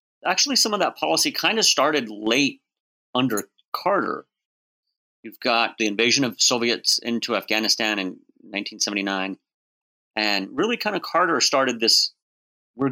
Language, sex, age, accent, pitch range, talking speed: English, male, 30-49, American, 105-130 Hz, 135 wpm